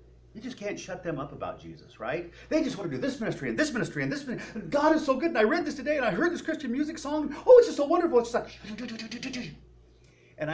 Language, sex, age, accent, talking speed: English, male, 40-59, American, 260 wpm